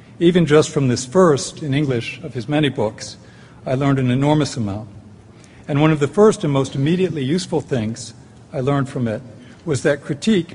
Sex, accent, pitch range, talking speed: male, American, 125-150 Hz, 190 wpm